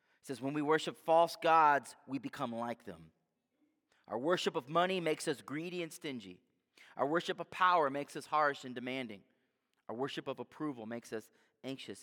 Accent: American